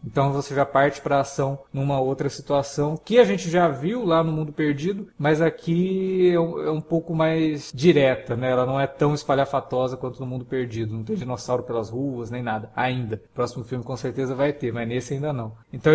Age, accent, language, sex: 20-39, Brazilian, Portuguese, male